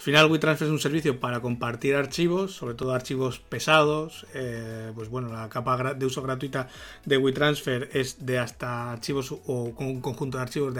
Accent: Spanish